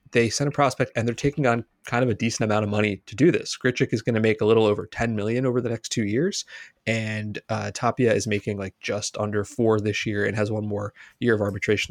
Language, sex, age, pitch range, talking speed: English, male, 30-49, 105-130 Hz, 255 wpm